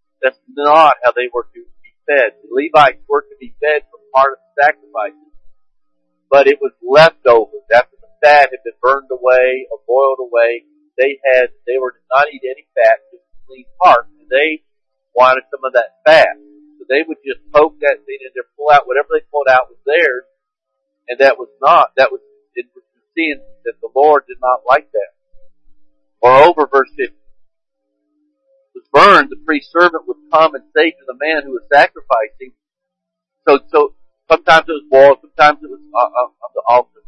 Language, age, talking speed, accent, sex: English, 50-69, 195 wpm, American, male